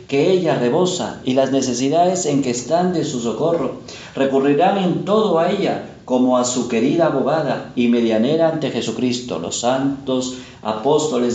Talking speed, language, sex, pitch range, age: 155 wpm, Spanish, male, 125-170 Hz, 50-69